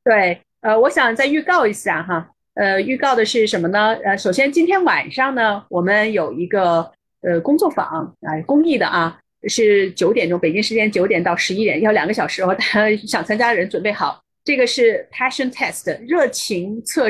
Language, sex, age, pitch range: Chinese, female, 30-49, 200-280 Hz